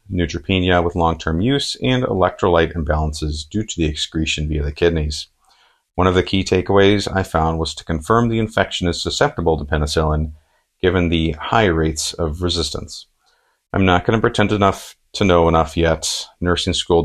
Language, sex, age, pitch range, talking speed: English, male, 40-59, 80-90 Hz, 170 wpm